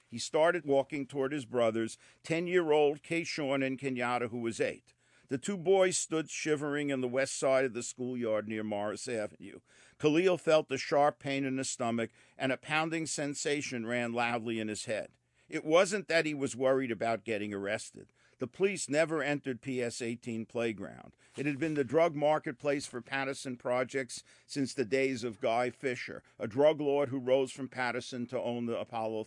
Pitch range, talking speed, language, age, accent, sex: 120-150 Hz, 175 wpm, English, 50-69, American, male